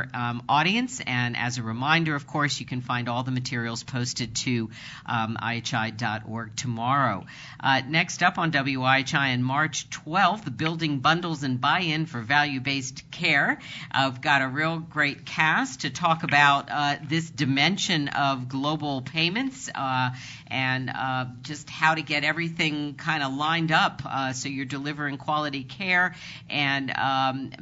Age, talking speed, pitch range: 50-69, 155 wpm, 125-155 Hz